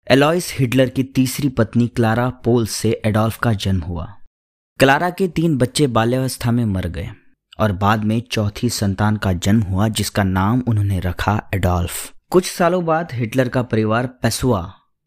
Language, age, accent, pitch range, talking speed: Hindi, 20-39, native, 100-125 Hz, 160 wpm